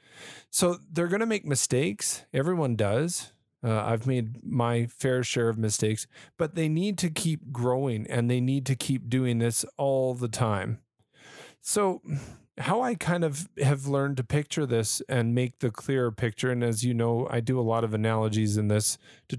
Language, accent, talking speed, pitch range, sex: English, American, 185 wpm, 115-140 Hz, male